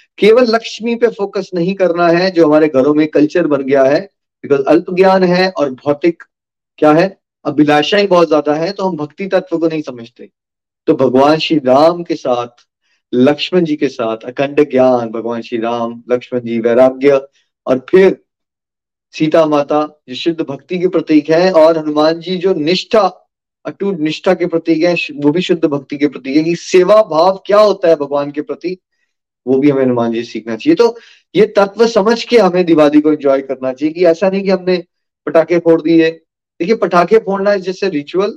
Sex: male